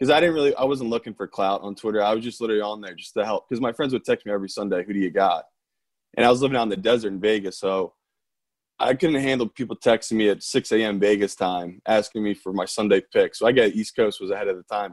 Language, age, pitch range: English, 20-39, 100-125 Hz